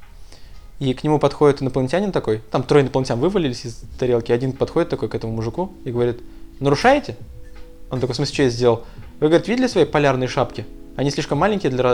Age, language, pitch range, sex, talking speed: 20-39, Russian, 120-155 Hz, male, 190 wpm